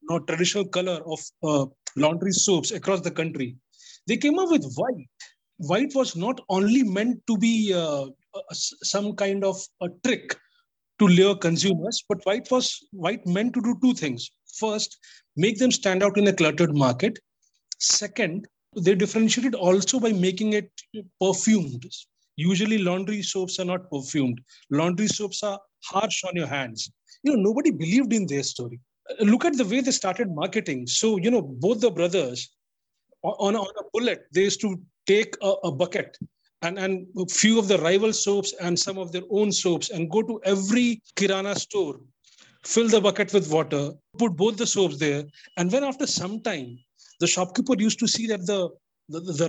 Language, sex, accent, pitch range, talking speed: English, male, Indian, 175-220 Hz, 180 wpm